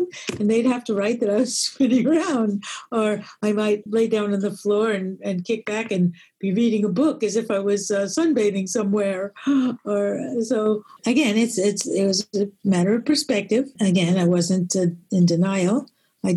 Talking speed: 190 wpm